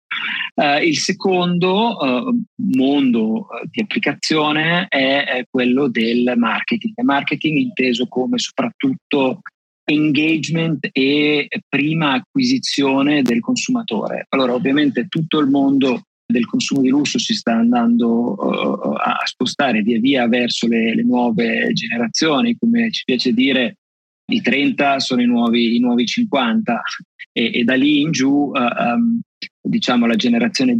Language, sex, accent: Italian, male, native